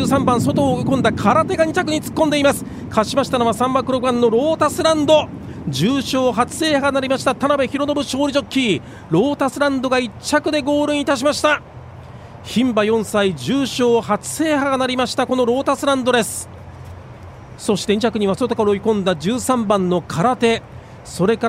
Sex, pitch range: male, 205-260 Hz